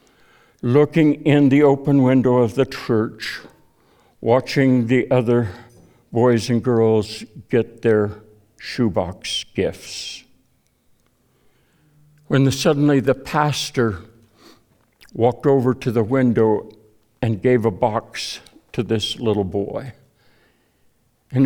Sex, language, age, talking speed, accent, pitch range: male, English, 60-79, 100 wpm, American, 115-140 Hz